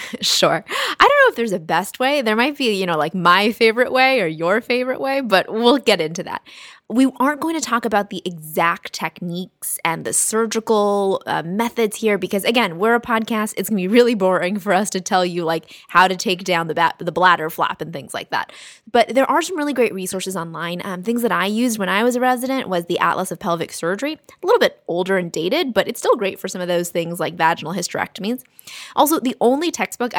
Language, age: English, 20-39